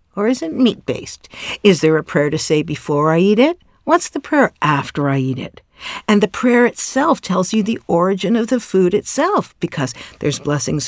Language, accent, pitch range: English, American, 150-220 Hz